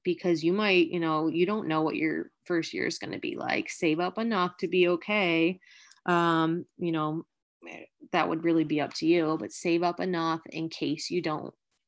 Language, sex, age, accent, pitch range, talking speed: English, female, 20-39, American, 160-180 Hz, 205 wpm